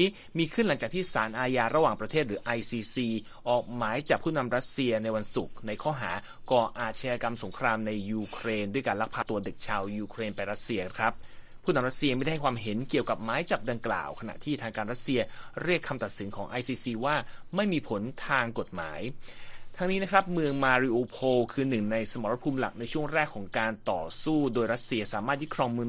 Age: 30-49